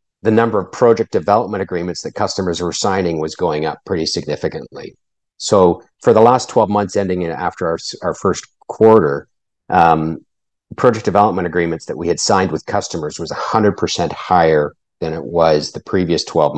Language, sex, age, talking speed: English, male, 50-69, 175 wpm